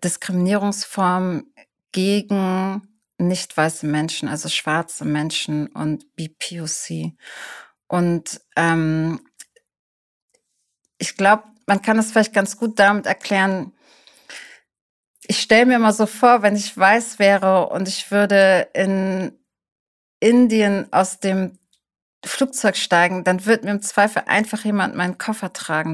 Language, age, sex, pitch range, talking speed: German, 30-49, female, 170-205 Hz, 115 wpm